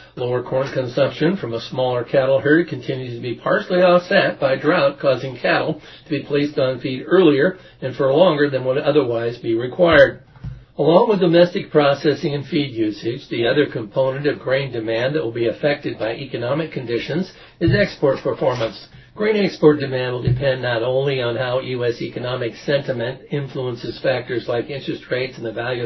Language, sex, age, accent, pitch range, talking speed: English, male, 60-79, American, 120-150 Hz, 170 wpm